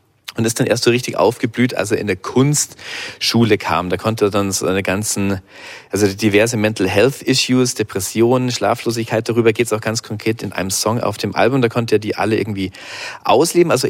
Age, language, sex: 40-59, German, male